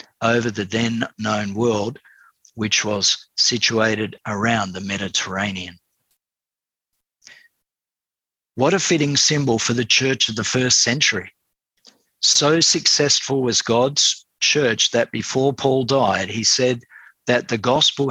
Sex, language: male, English